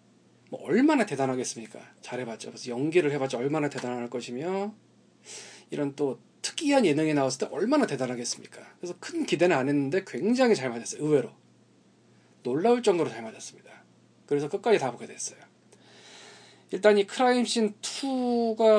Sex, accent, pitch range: male, native, 135-215 Hz